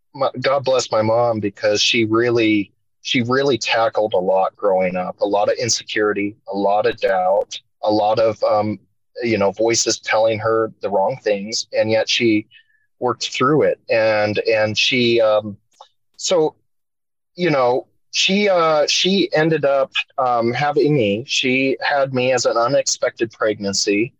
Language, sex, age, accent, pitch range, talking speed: English, male, 30-49, American, 105-125 Hz, 155 wpm